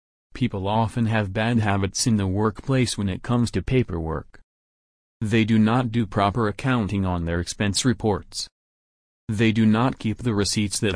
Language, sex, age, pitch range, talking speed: English, male, 40-59, 90-110 Hz, 165 wpm